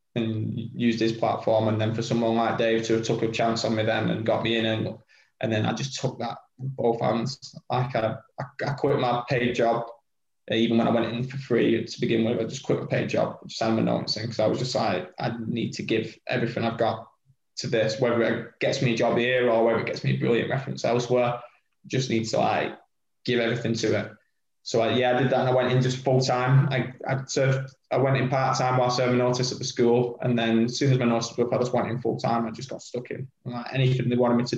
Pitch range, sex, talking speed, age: 115-130 Hz, male, 260 wpm, 20-39